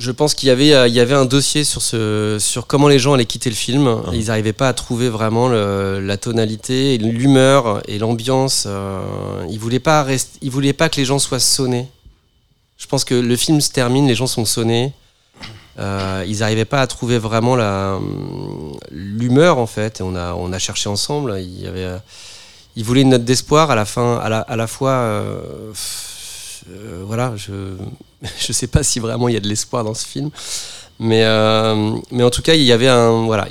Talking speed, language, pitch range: 200 wpm, French, 105-125 Hz